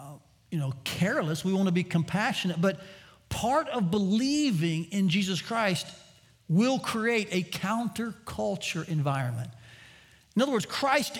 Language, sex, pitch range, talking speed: English, male, 165-240 Hz, 130 wpm